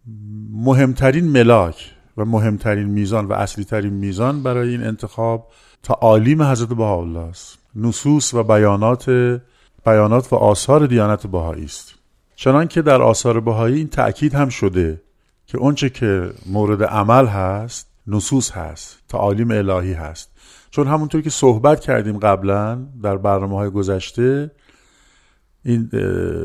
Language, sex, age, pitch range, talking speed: Persian, male, 50-69, 100-130 Hz, 120 wpm